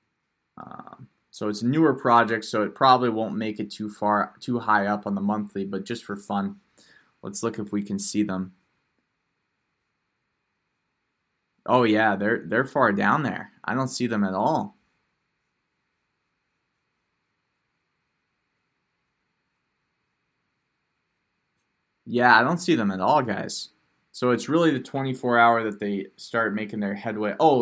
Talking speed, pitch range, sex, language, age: 140 wpm, 105-125 Hz, male, English, 20-39